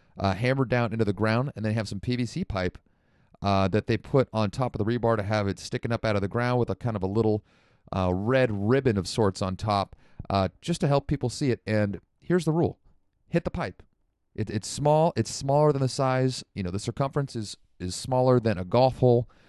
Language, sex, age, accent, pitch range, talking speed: English, male, 30-49, American, 100-130 Hz, 230 wpm